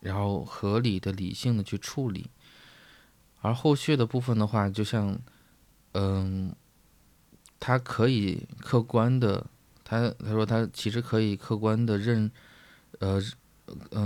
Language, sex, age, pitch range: Chinese, male, 20-39, 100-120 Hz